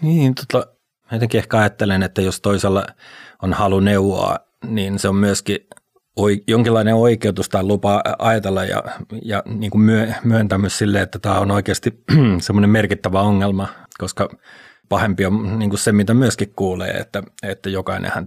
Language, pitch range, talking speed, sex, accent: Finnish, 95-110 Hz, 150 wpm, male, native